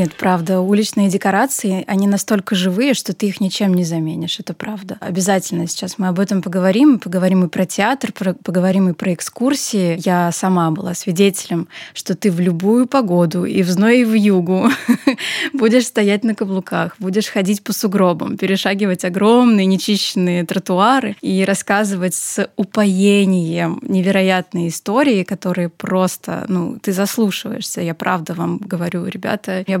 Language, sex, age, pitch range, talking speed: Russian, female, 20-39, 185-220 Hz, 145 wpm